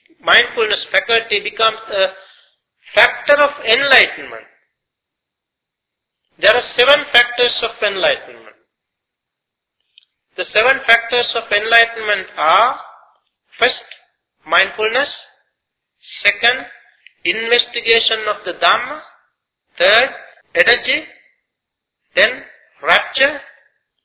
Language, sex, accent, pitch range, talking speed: English, male, Indian, 205-290 Hz, 75 wpm